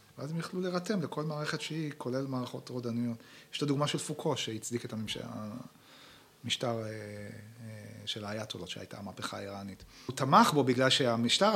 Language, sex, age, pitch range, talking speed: Hebrew, male, 30-49, 115-155 Hz, 160 wpm